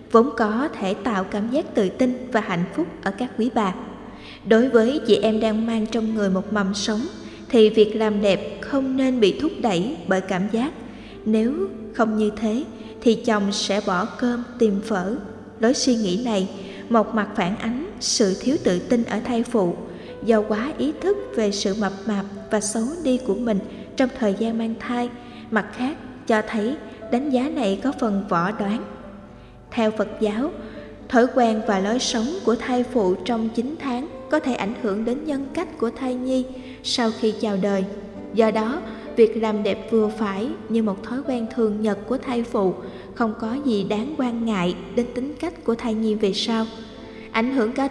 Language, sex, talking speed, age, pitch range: Vietnamese, female, 195 wpm, 20-39, 210-245 Hz